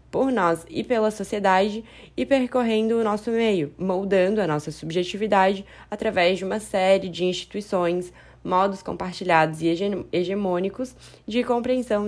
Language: Portuguese